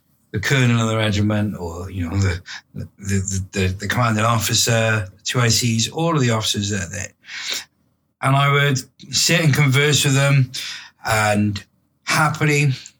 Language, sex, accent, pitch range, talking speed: English, male, British, 100-135 Hz, 155 wpm